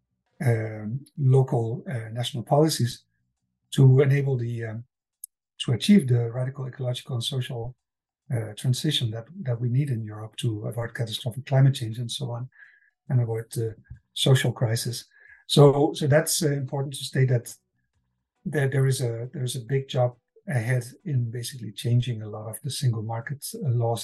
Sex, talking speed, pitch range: male, 165 wpm, 120-145 Hz